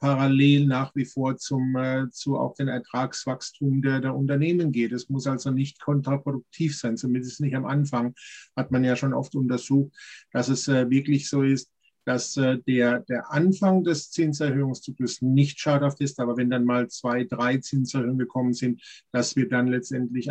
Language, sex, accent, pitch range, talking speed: German, male, German, 125-140 Hz, 175 wpm